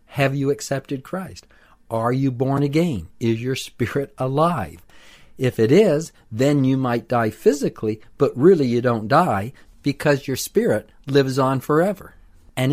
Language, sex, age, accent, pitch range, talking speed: English, male, 50-69, American, 105-135 Hz, 150 wpm